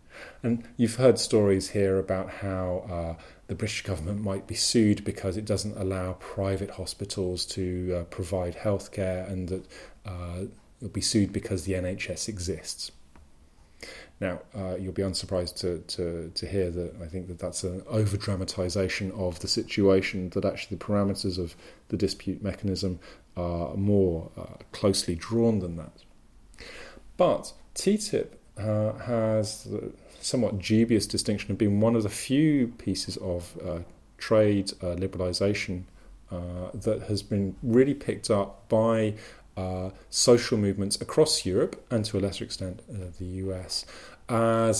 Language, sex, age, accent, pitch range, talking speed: English, male, 30-49, British, 90-110 Hz, 150 wpm